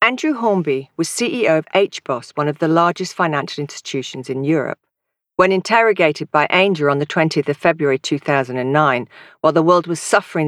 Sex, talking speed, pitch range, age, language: female, 165 wpm, 145-190 Hz, 50-69, English